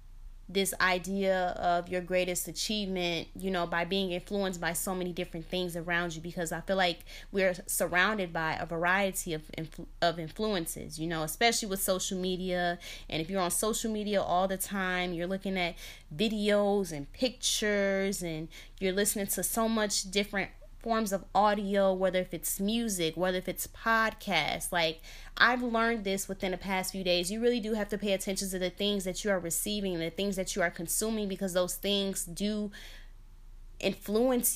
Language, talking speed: English, 180 wpm